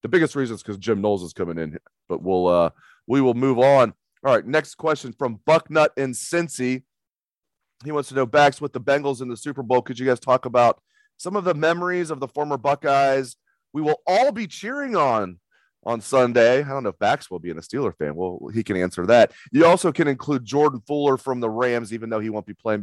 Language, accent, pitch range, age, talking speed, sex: English, American, 110-145 Hz, 30-49, 235 wpm, male